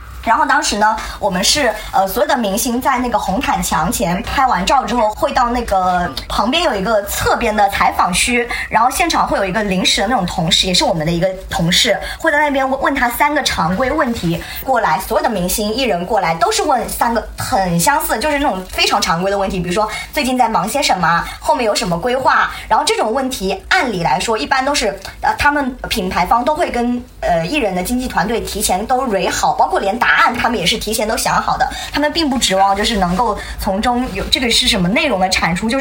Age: 20-39